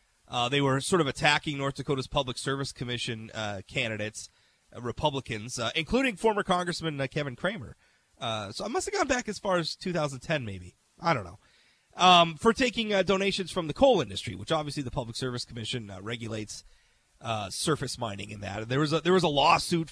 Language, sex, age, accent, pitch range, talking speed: English, male, 30-49, American, 130-185 Hz, 200 wpm